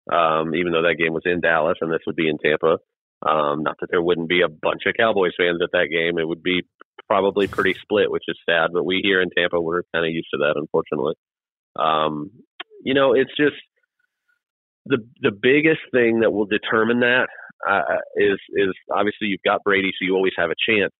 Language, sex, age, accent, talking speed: English, male, 30-49, American, 215 wpm